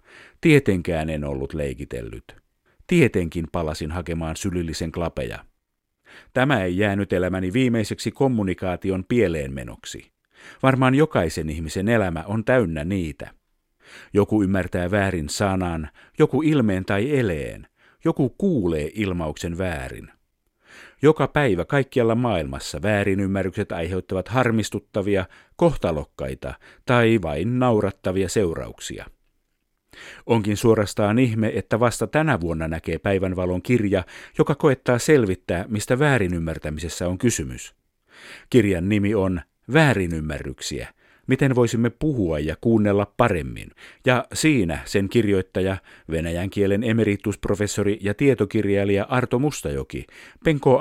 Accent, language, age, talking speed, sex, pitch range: native, Finnish, 50-69, 100 wpm, male, 85-120 Hz